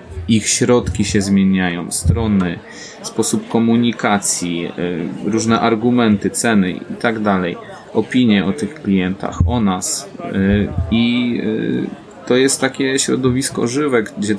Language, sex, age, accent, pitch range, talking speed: Polish, male, 20-39, native, 100-115 Hz, 110 wpm